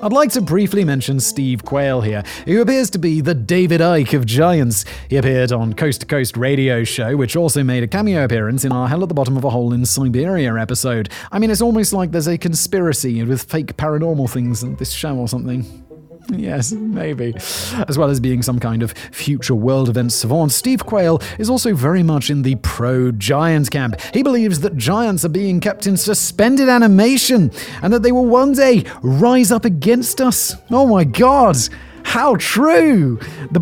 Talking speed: 195 wpm